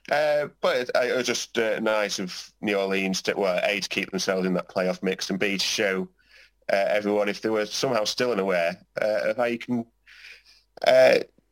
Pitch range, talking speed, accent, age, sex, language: 95-120 Hz, 205 wpm, British, 30-49, male, English